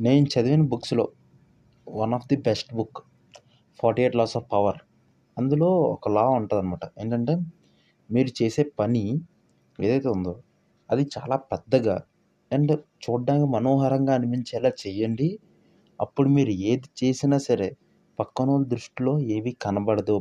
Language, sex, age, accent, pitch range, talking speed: Telugu, male, 30-49, native, 110-145 Hz, 120 wpm